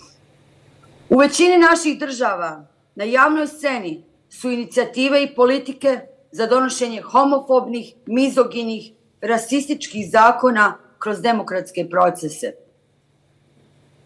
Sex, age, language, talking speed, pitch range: female, 40-59, English, 85 wpm, 200-255 Hz